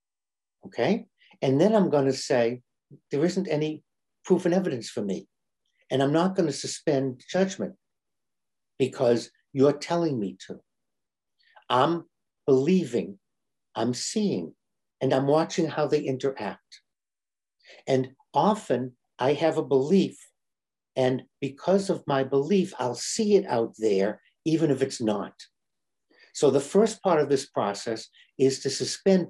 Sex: male